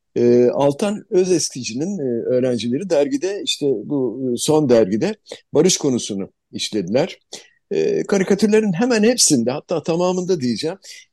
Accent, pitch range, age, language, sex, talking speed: native, 115-175 Hz, 60-79, Turkish, male, 90 wpm